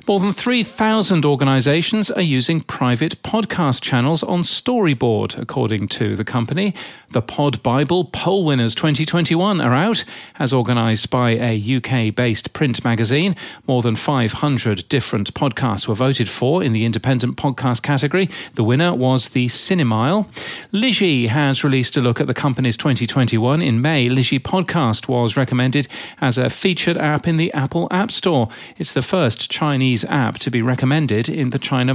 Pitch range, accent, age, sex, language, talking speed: 120-160 Hz, British, 40-59, male, English, 160 wpm